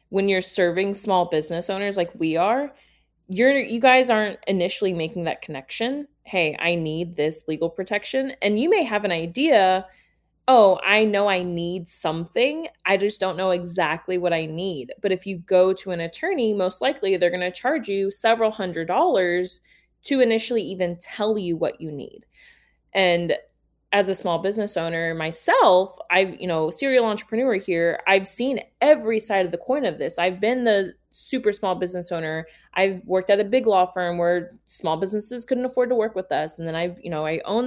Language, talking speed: English, 195 wpm